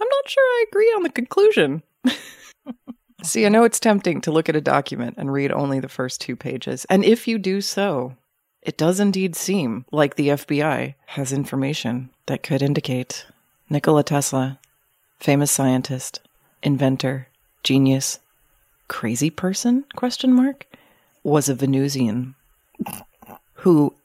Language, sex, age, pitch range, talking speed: English, female, 30-49, 135-165 Hz, 140 wpm